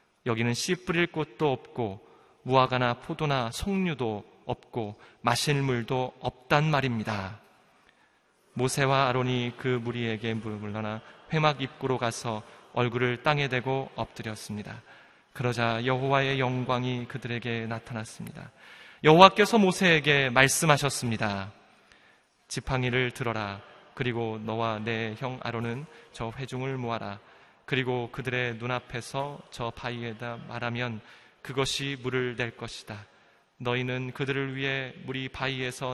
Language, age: Korean, 20-39